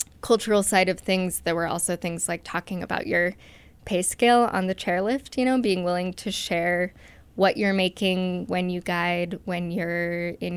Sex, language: female, English